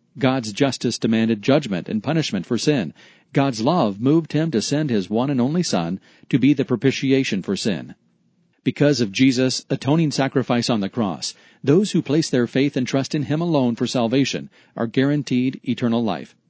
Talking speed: 180 wpm